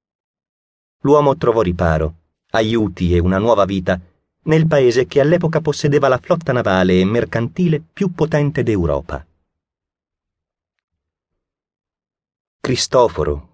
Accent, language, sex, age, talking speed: native, Italian, male, 30-49, 100 wpm